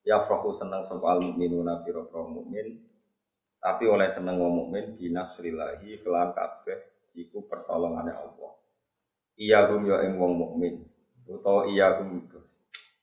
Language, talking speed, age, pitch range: Indonesian, 125 wpm, 20-39, 95-125 Hz